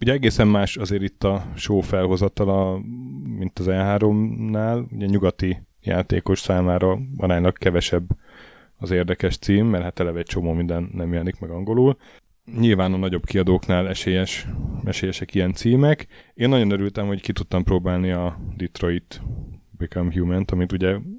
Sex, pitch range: male, 90-110 Hz